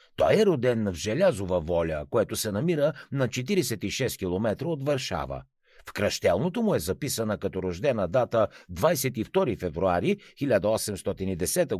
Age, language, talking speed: 60-79, Bulgarian, 125 wpm